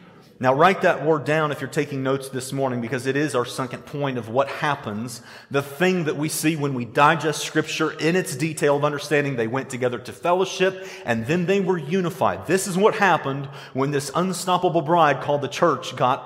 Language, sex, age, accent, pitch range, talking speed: English, male, 40-59, American, 130-195 Hz, 205 wpm